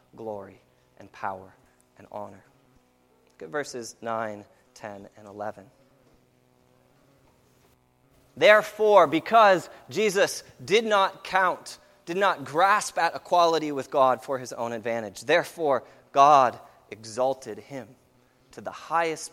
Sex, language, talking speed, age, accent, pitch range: male, English, 110 wpm, 30-49, American, 100-170 Hz